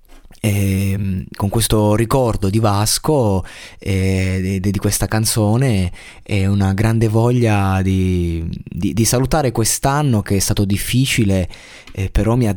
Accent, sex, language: native, male, Italian